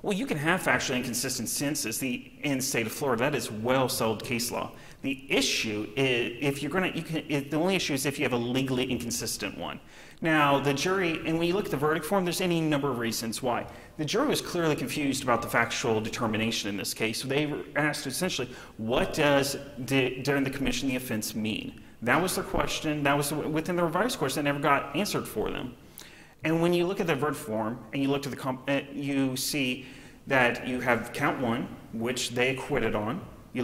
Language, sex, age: English, male, 30-49